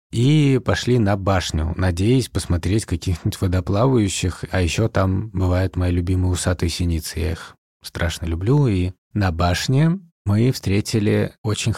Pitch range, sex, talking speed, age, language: 90-115 Hz, male, 130 wpm, 30-49, Russian